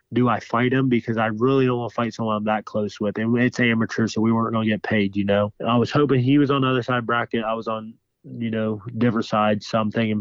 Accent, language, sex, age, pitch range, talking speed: American, English, male, 20-39, 110-125 Hz, 290 wpm